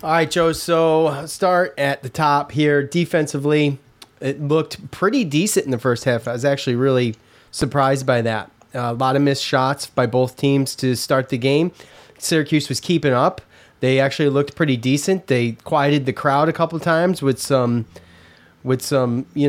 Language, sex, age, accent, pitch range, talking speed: English, male, 30-49, American, 130-150 Hz, 185 wpm